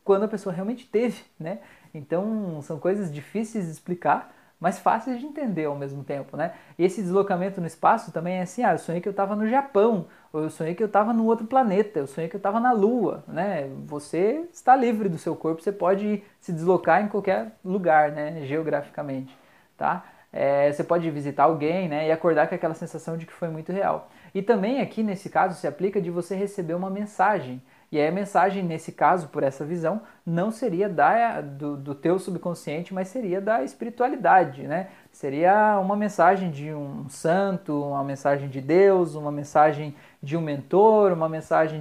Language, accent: Portuguese, Brazilian